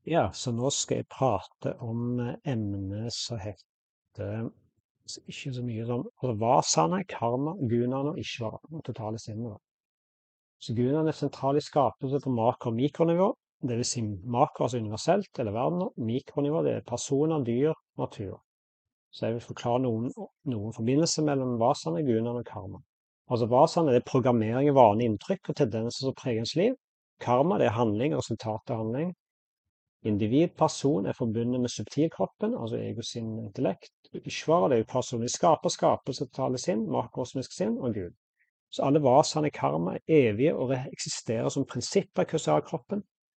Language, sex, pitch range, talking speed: English, male, 115-150 Hz, 170 wpm